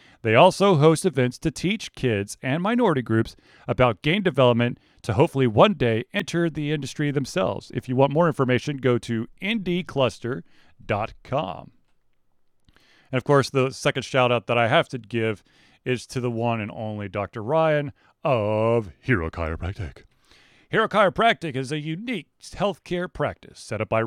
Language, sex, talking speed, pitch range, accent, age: English, male, 155 wpm, 120-160 Hz, American, 40-59